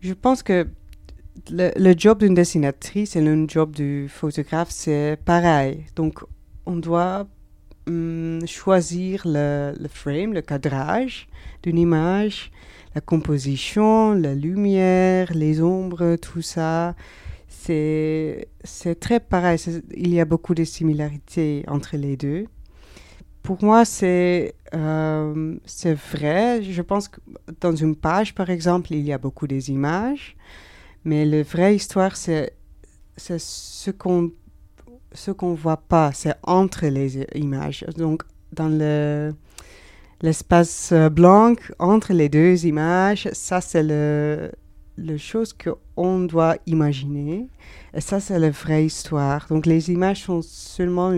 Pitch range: 150-180 Hz